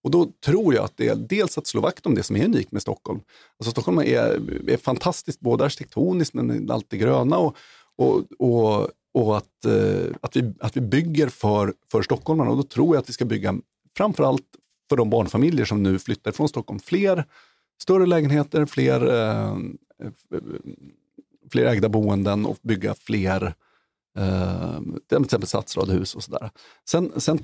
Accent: native